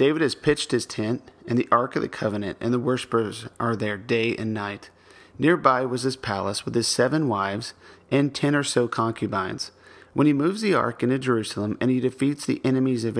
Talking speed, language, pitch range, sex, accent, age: 205 wpm, English, 110-135 Hz, male, American, 40-59